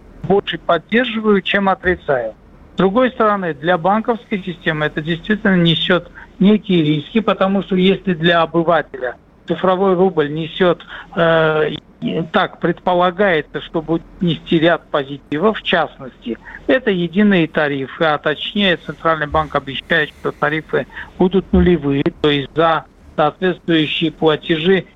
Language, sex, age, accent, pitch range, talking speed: Russian, male, 60-79, native, 155-195 Hz, 120 wpm